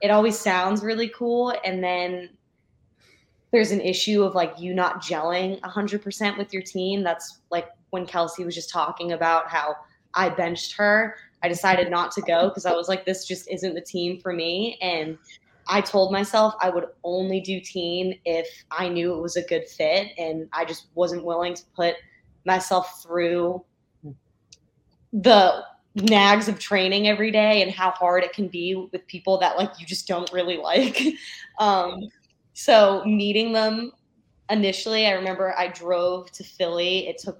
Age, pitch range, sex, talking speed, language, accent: 20-39, 175-200 Hz, female, 175 wpm, English, American